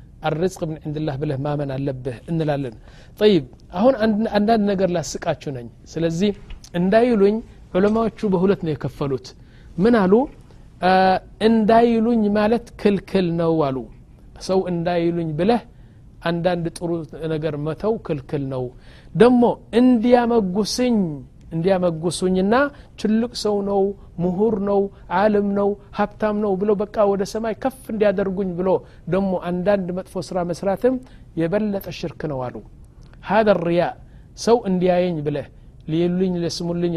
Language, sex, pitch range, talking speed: Amharic, male, 160-210 Hz, 120 wpm